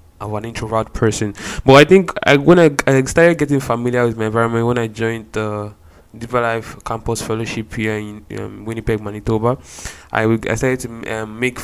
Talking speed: 190 wpm